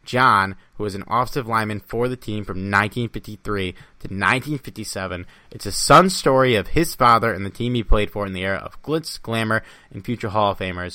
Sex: male